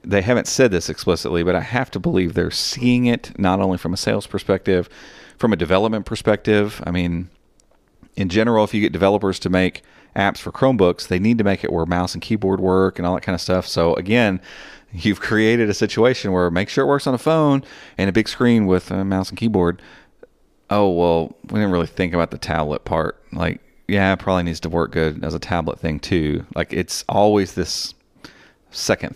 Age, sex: 40-59, male